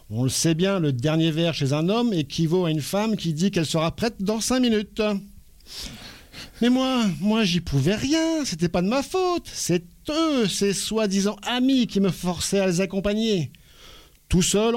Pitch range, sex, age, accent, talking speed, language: 160-245 Hz, male, 50-69, French, 185 wpm, French